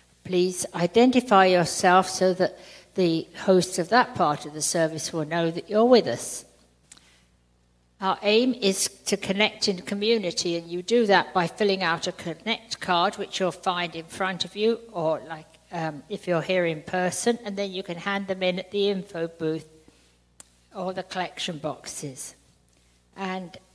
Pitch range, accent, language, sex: 160-195 Hz, British, English, female